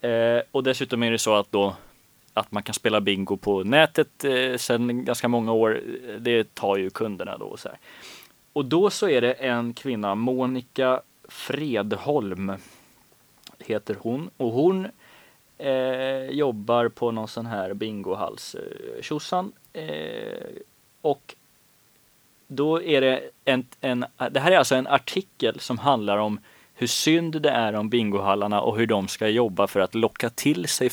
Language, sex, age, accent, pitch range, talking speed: Swedish, male, 20-39, native, 105-135 Hz, 155 wpm